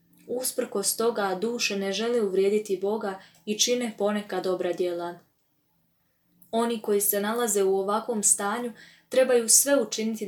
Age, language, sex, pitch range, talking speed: 20-39, Croatian, female, 190-220 Hz, 130 wpm